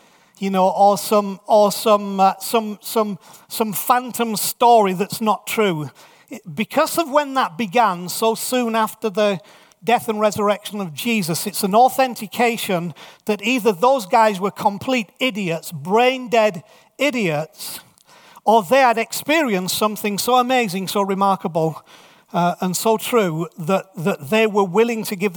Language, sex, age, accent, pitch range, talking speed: English, male, 40-59, British, 190-235 Hz, 145 wpm